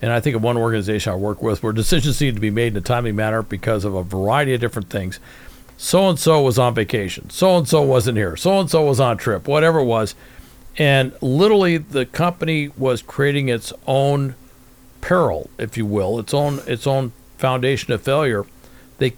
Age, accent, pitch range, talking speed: 50-69, American, 115-145 Hz, 190 wpm